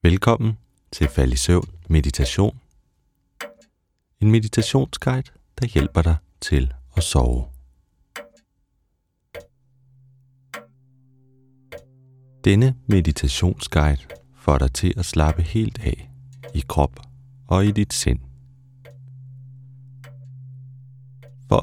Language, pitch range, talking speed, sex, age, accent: Danish, 90-130 Hz, 85 wpm, male, 30-49, native